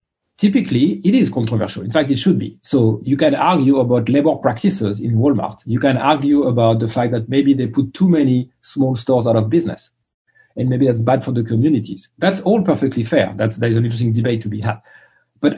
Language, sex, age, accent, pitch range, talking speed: English, male, 40-59, French, 115-150 Hz, 210 wpm